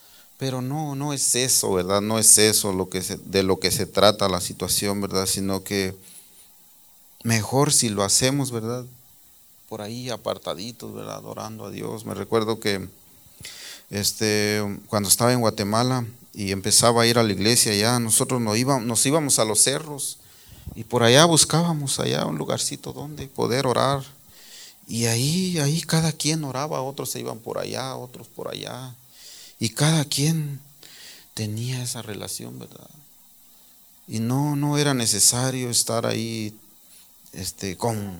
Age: 40-59